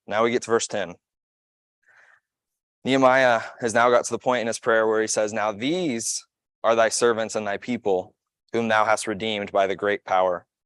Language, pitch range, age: English, 100-120 Hz, 20-39